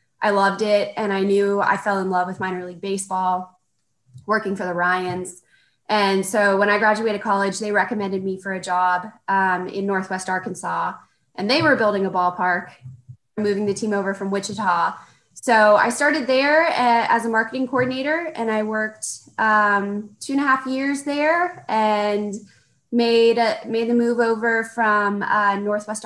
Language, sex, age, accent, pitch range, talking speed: English, female, 20-39, American, 185-215 Hz, 170 wpm